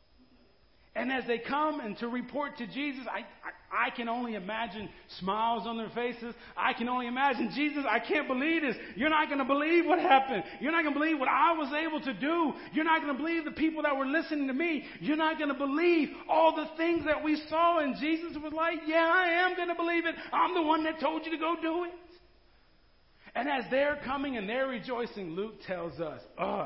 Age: 40-59